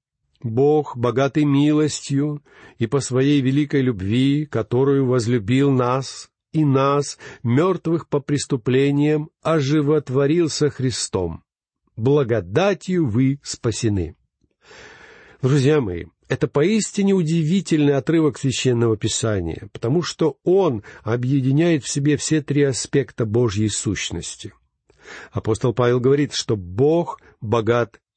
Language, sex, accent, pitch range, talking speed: Russian, male, native, 120-160 Hz, 100 wpm